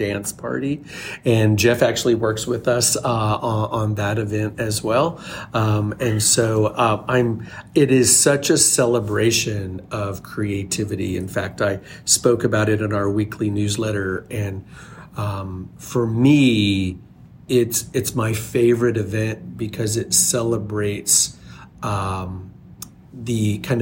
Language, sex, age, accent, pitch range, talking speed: English, male, 40-59, American, 105-120 Hz, 130 wpm